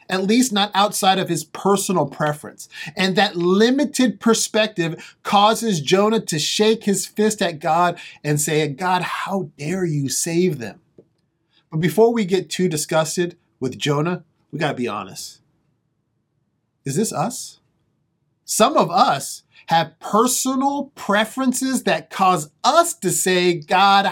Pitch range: 145-210 Hz